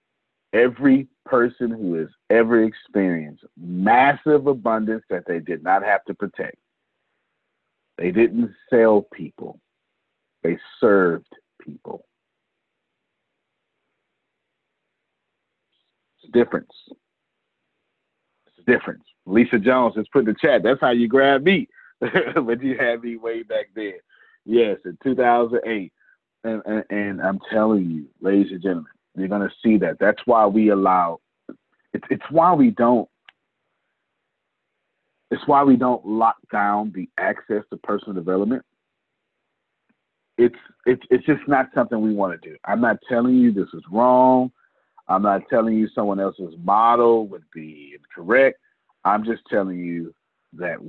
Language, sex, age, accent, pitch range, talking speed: English, male, 50-69, American, 100-125 Hz, 135 wpm